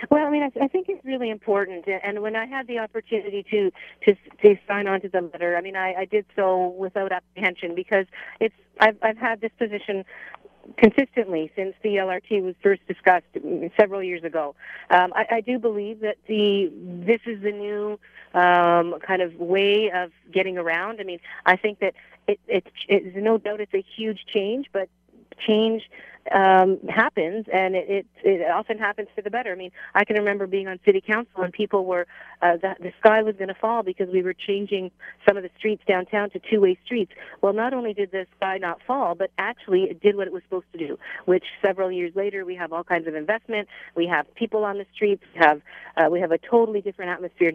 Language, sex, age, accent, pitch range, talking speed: English, female, 40-59, American, 180-215 Hz, 215 wpm